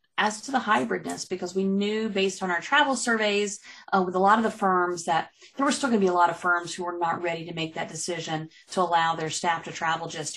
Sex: female